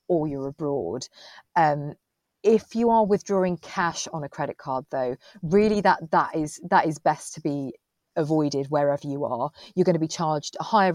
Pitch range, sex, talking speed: 145-185 Hz, female, 185 wpm